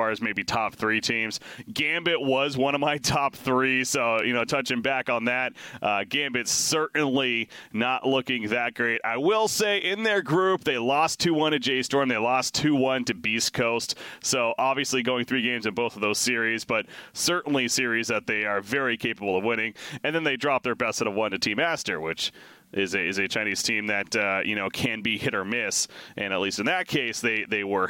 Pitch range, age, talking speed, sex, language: 115-155 Hz, 30-49, 220 wpm, male, English